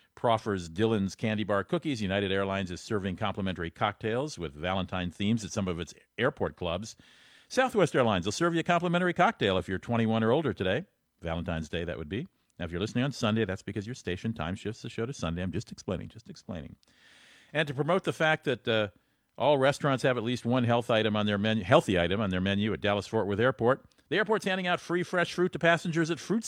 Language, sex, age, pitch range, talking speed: English, male, 50-69, 100-135 Hz, 225 wpm